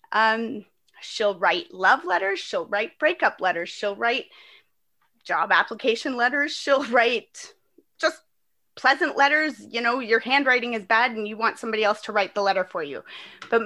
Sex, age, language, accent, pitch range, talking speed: female, 30-49, English, American, 195-265 Hz, 165 wpm